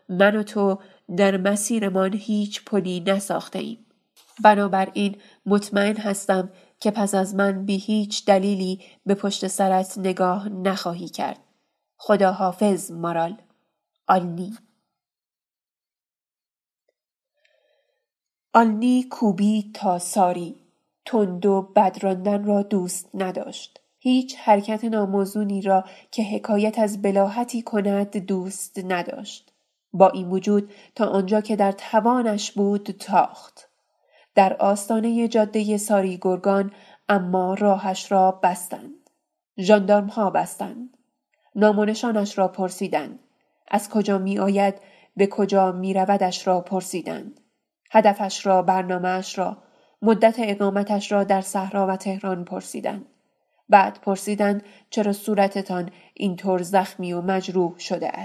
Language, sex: Persian, female